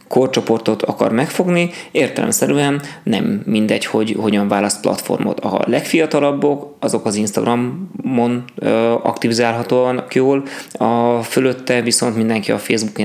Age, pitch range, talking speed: 20-39, 105-125 Hz, 105 wpm